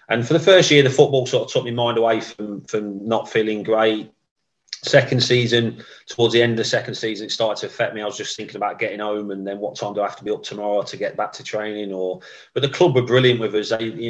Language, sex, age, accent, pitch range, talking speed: English, male, 30-49, British, 105-120 Hz, 275 wpm